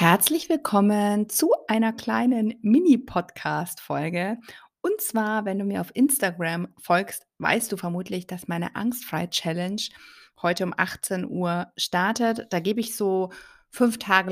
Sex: female